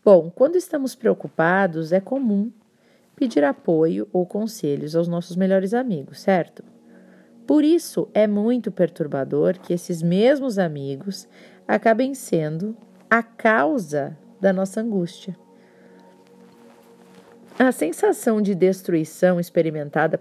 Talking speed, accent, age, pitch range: 105 wpm, Brazilian, 40-59, 165-230 Hz